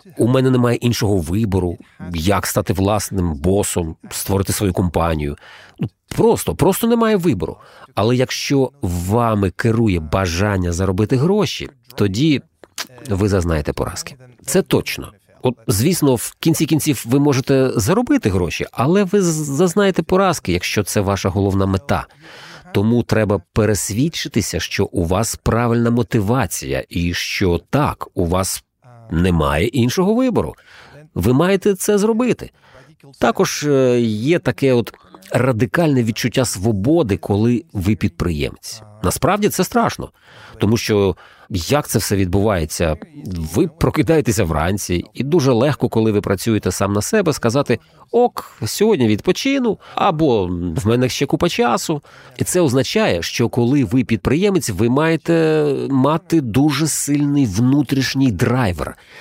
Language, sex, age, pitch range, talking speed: Ukrainian, male, 40-59, 100-145 Hz, 125 wpm